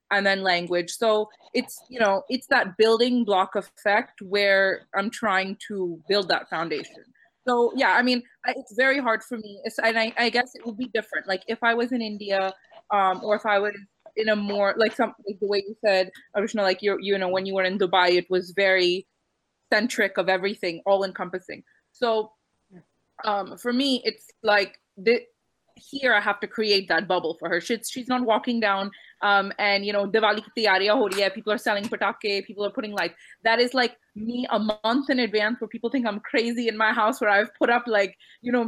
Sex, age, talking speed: female, 20-39, 210 wpm